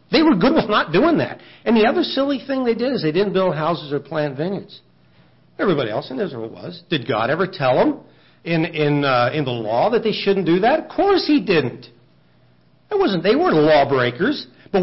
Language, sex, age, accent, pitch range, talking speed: English, male, 60-79, American, 150-230 Hz, 215 wpm